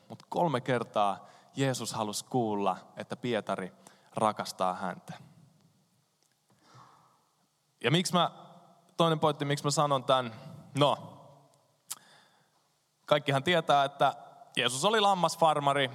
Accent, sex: native, male